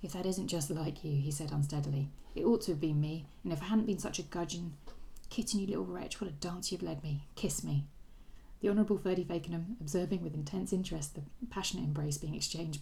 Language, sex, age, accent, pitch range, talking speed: English, female, 30-49, British, 145-190 Hz, 225 wpm